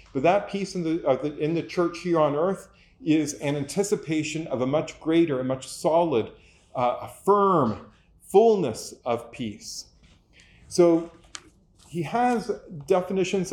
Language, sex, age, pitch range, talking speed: English, male, 40-59, 140-175 Hz, 140 wpm